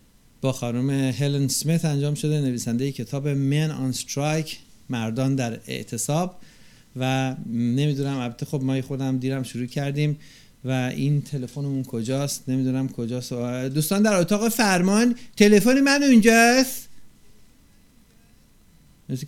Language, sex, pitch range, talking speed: Persian, male, 130-165 Hz, 115 wpm